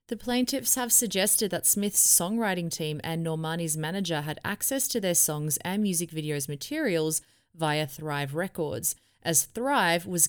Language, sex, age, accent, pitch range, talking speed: English, female, 20-39, Australian, 155-205 Hz, 150 wpm